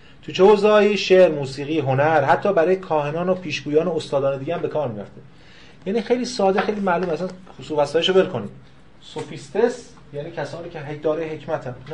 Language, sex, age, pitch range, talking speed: Persian, male, 30-49, 140-180 Hz, 170 wpm